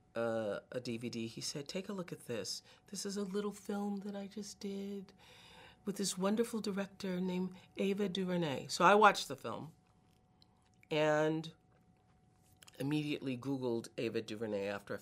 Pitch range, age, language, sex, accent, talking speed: 135-195 Hz, 40-59, English, female, American, 150 wpm